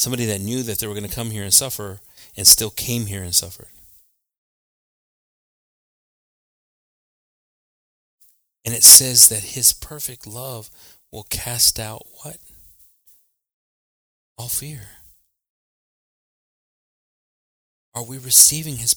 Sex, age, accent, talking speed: male, 30-49, American, 110 wpm